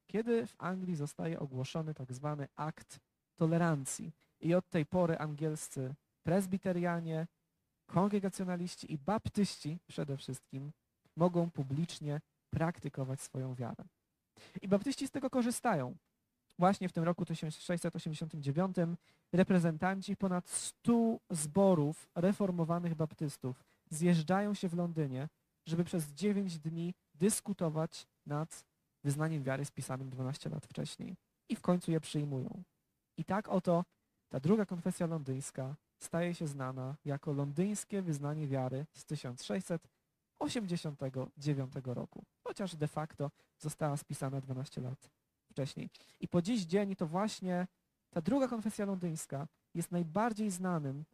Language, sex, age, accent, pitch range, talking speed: Polish, male, 20-39, native, 145-185 Hz, 115 wpm